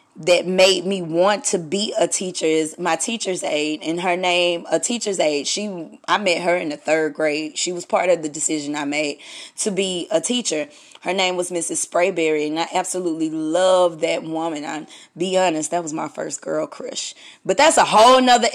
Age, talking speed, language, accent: 20-39, 205 wpm, English, American